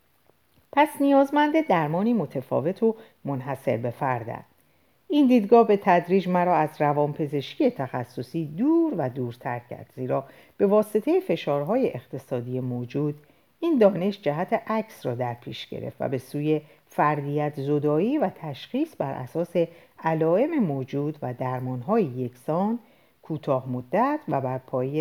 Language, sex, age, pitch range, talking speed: Persian, female, 50-69, 130-220 Hz, 125 wpm